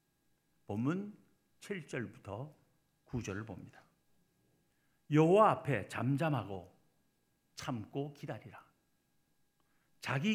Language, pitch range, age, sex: Korean, 130-175 Hz, 50-69, male